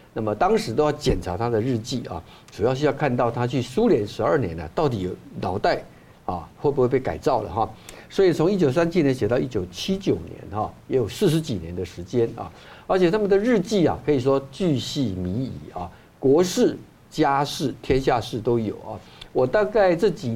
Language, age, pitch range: Chinese, 50-69, 120-170 Hz